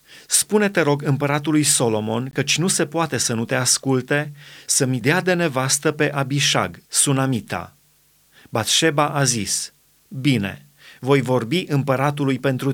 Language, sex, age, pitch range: Romanian, male, 30-49, 125-150 Hz